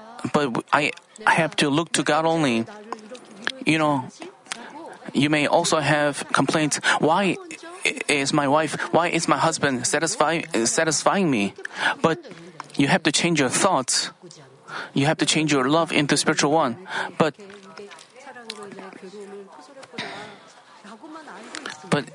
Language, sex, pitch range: Korean, male, 150-195 Hz